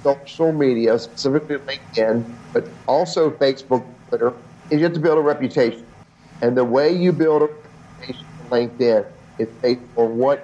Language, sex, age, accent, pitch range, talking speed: English, male, 50-69, American, 130-160 Hz, 160 wpm